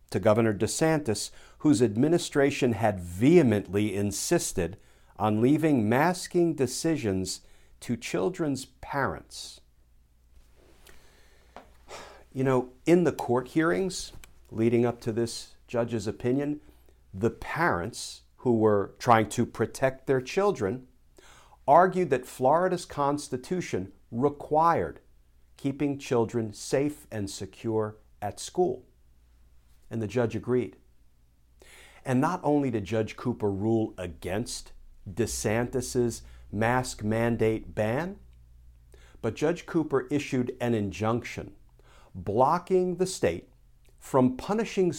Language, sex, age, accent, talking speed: English, male, 50-69, American, 100 wpm